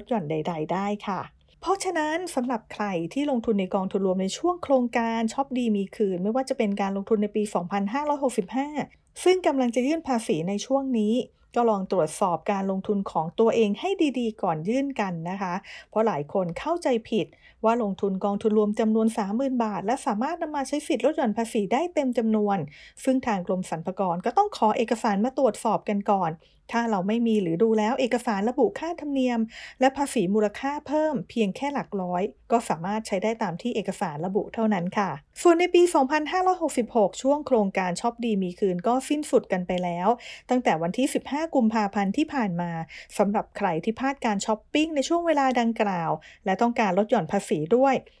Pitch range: 200-265 Hz